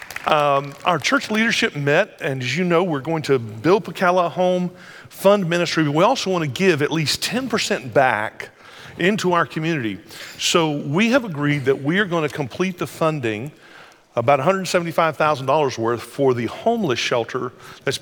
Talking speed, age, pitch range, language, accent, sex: 165 wpm, 50-69, 140-185 Hz, English, American, male